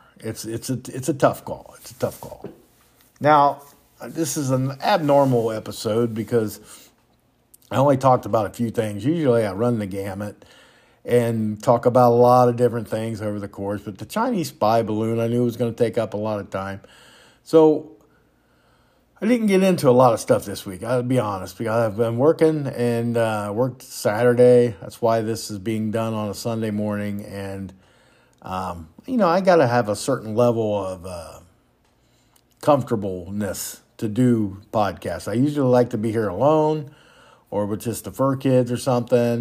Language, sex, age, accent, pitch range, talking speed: English, male, 50-69, American, 105-125 Hz, 185 wpm